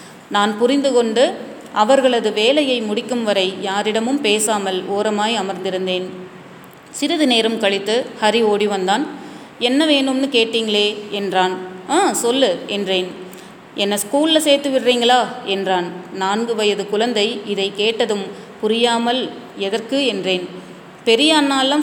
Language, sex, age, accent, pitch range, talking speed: Tamil, female, 30-49, native, 200-245 Hz, 105 wpm